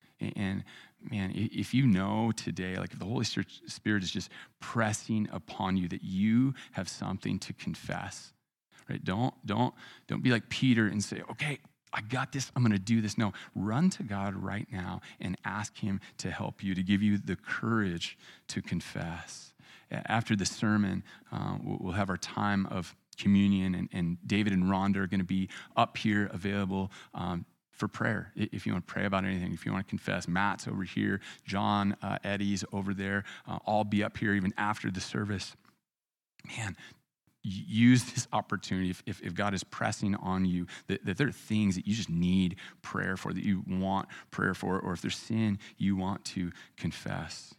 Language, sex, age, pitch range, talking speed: English, male, 30-49, 95-110 Hz, 185 wpm